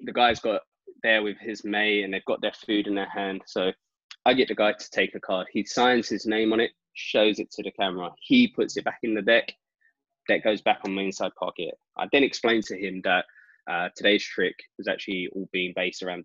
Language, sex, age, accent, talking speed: English, male, 20-39, British, 235 wpm